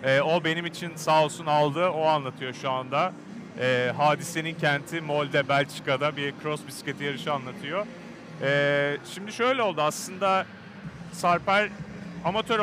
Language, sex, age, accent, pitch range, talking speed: Turkish, male, 40-59, native, 155-195 Hz, 120 wpm